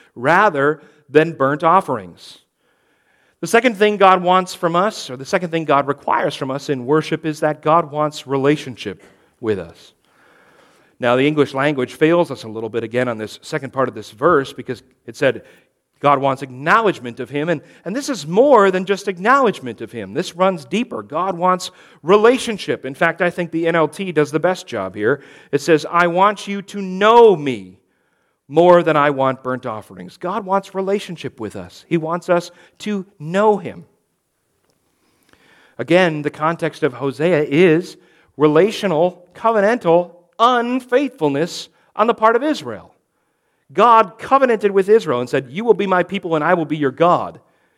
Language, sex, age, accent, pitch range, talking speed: English, male, 40-59, American, 135-185 Hz, 170 wpm